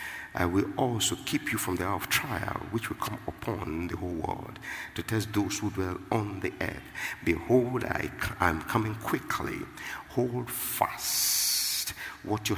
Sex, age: male, 50-69